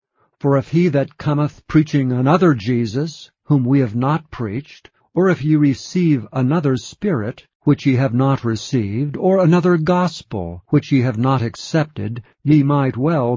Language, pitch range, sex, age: English, 120-155 Hz, male, 60-79